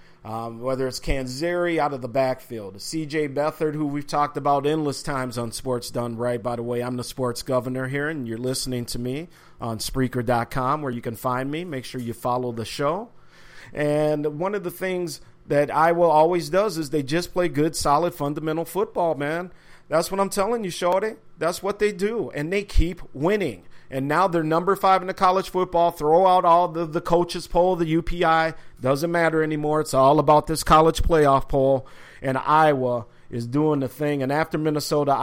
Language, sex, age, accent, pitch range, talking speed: English, male, 40-59, American, 130-170 Hz, 200 wpm